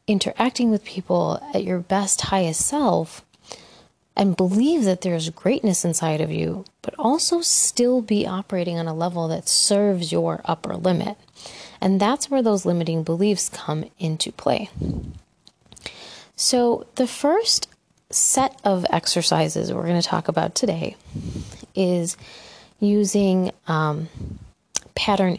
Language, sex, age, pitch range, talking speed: English, female, 20-39, 175-215 Hz, 125 wpm